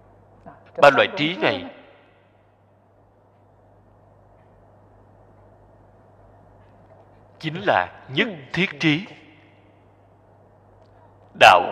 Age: 60-79